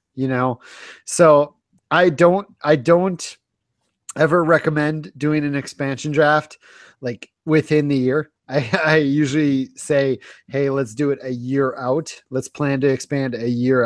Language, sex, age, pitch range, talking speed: English, male, 30-49, 125-150 Hz, 145 wpm